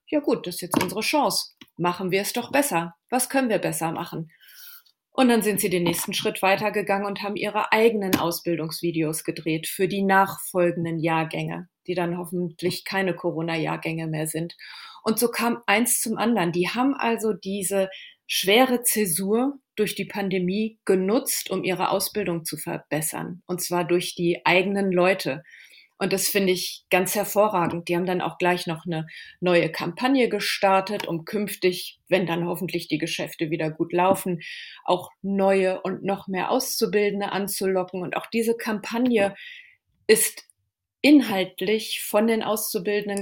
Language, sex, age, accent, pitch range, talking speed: German, female, 30-49, German, 175-210 Hz, 155 wpm